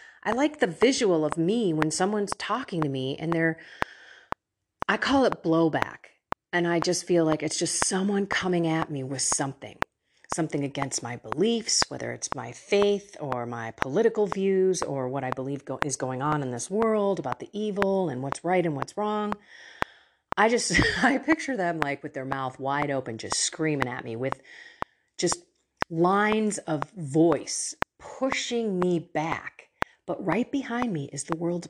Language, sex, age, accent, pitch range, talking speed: English, female, 40-59, American, 155-215 Hz, 170 wpm